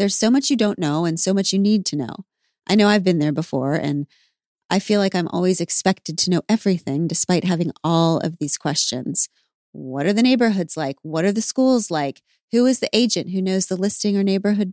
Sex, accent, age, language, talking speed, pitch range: female, American, 30-49, English, 225 wpm, 170-220 Hz